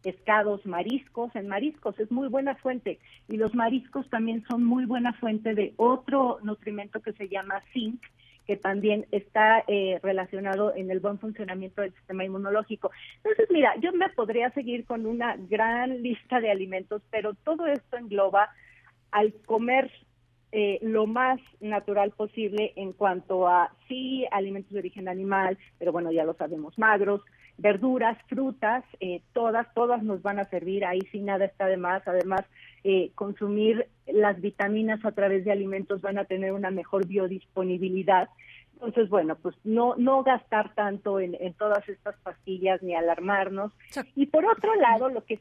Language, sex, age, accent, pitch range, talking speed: Spanish, female, 40-59, Mexican, 190-235 Hz, 160 wpm